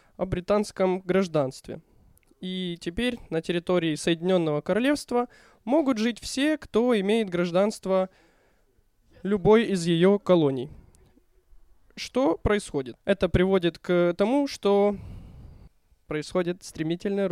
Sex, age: male, 20-39